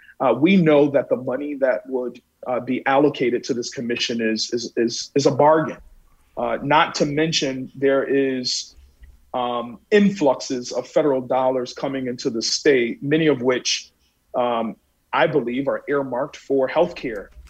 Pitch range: 115-140 Hz